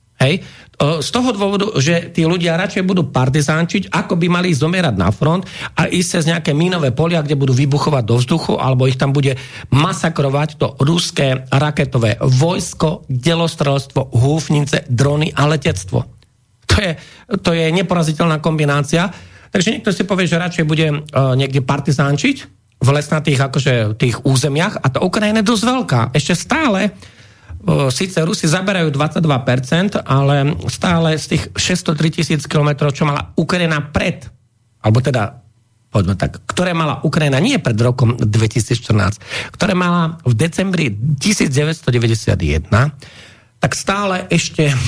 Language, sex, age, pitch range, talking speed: Slovak, male, 40-59, 130-170 Hz, 135 wpm